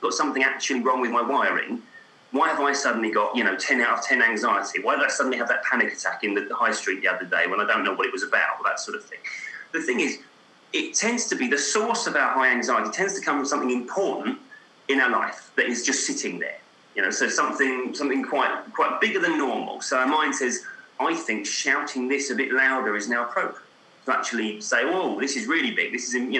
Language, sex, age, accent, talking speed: English, male, 30-49, British, 250 wpm